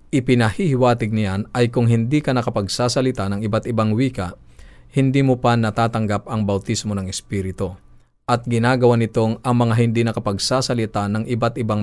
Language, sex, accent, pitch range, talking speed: Filipino, male, native, 100-125 Hz, 145 wpm